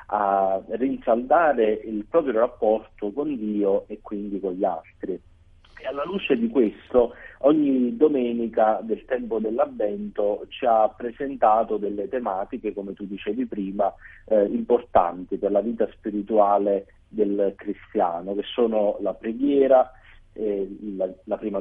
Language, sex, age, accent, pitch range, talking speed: Italian, male, 30-49, native, 100-115 Hz, 130 wpm